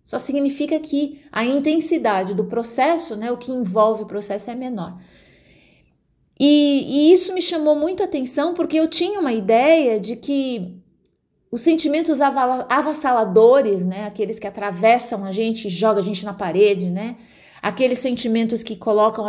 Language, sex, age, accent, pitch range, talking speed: English, female, 30-49, Brazilian, 205-275 Hz, 160 wpm